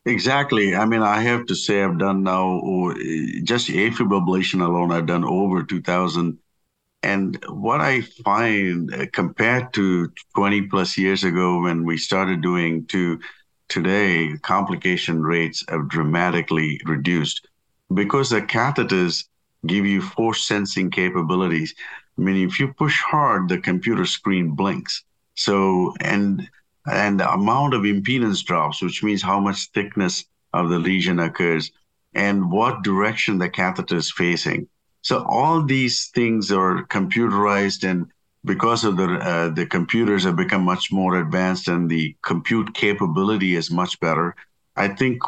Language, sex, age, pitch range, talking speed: English, male, 50-69, 90-105 Hz, 140 wpm